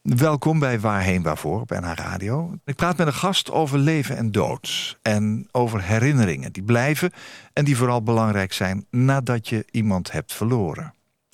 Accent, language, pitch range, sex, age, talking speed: Dutch, Dutch, 105-145 Hz, male, 50-69, 165 wpm